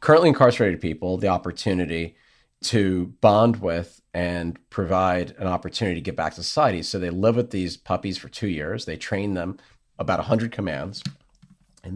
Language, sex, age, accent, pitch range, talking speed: English, male, 40-59, American, 90-115 Hz, 170 wpm